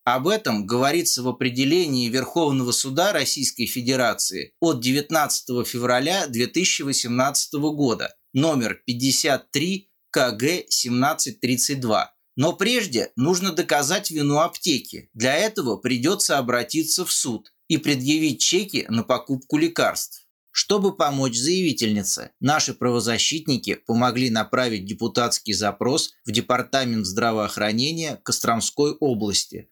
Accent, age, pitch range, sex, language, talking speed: native, 20-39, 120-160 Hz, male, Russian, 100 wpm